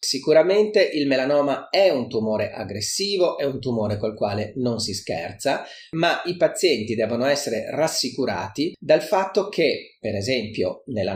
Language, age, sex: Italian, 40-59, male